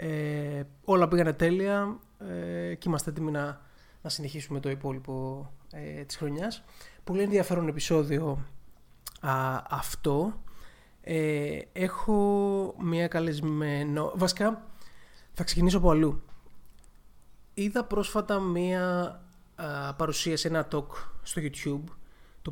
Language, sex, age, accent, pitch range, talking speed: Greek, male, 30-49, native, 145-180 Hz, 105 wpm